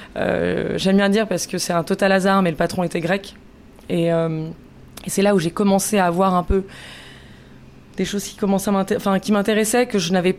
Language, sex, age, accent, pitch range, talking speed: French, female, 20-39, French, 175-205 Hz, 225 wpm